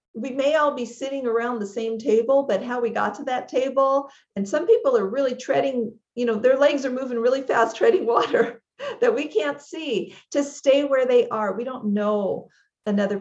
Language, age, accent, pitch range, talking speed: English, 50-69, American, 195-245 Hz, 205 wpm